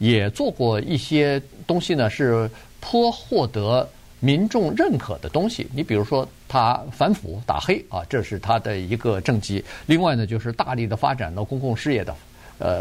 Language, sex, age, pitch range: Chinese, male, 50-69, 105-140 Hz